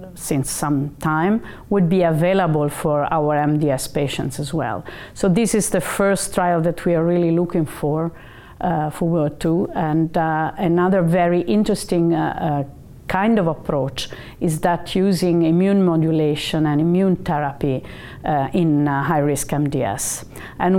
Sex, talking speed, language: female, 140 wpm, English